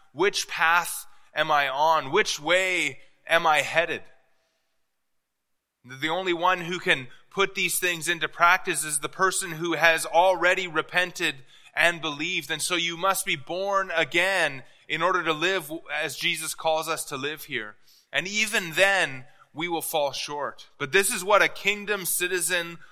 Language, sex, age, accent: English, male, 20-39, American